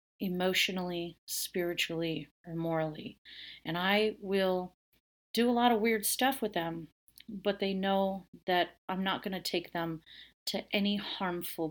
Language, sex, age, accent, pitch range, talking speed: English, female, 40-59, American, 175-220 Hz, 145 wpm